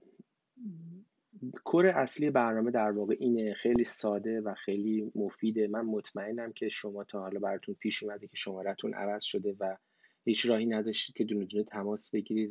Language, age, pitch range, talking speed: Persian, 30-49, 100-115 Hz, 160 wpm